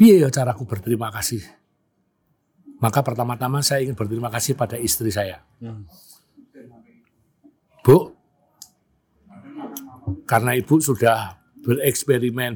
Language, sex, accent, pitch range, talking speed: Indonesian, male, native, 110-150 Hz, 85 wpm